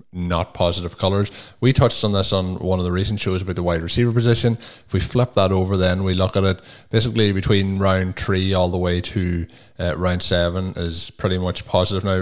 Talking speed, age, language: 215 wpm, 20-39, English